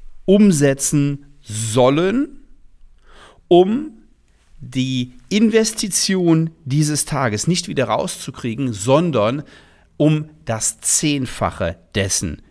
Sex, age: male, 40-59